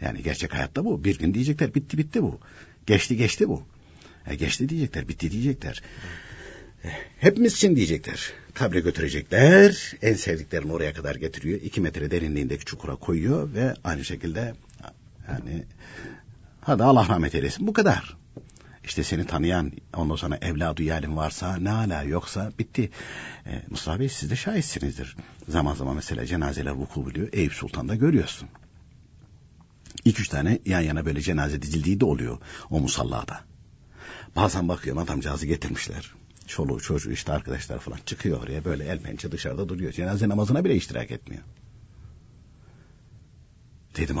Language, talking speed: Turkish, 140 wpm